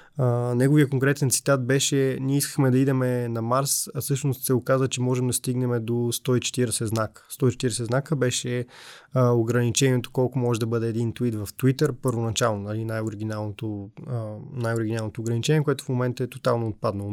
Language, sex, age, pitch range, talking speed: Bulgarian, male, 20-39, 115-140 Hz, 165 wpm